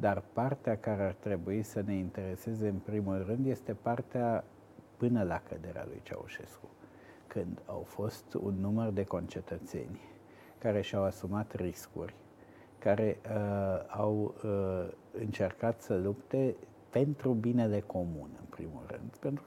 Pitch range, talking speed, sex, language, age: 95-115 Hz, 125 wpm, male, Romanian, 50-69